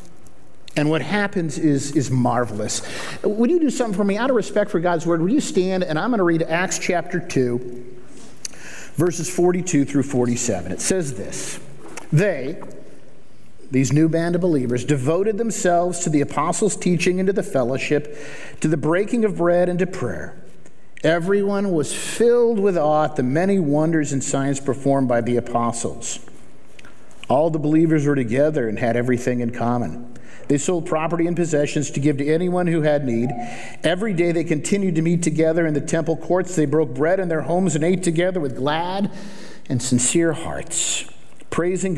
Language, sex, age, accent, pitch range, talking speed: English, male, 50-69, American, 130-175 Hz, 175 wpm